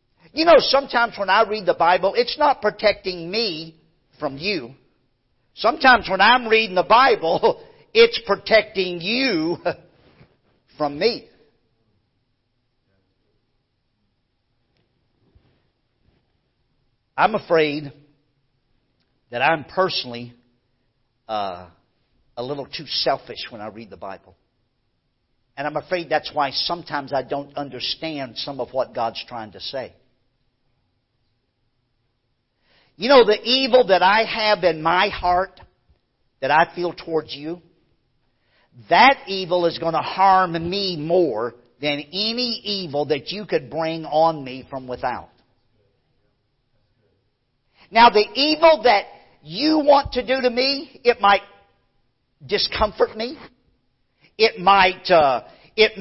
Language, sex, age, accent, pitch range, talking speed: English, male, 50-69, American, 125-210 Hz, 115 wpm